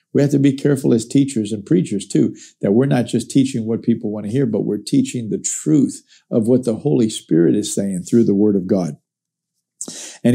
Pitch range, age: 115-145 Hz, 50-69